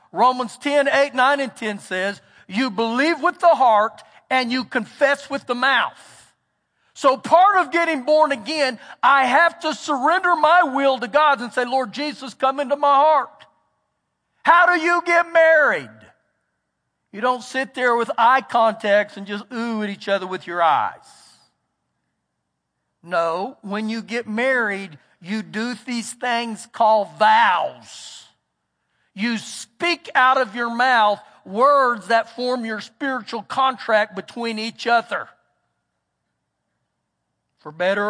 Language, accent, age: English, American, 50-69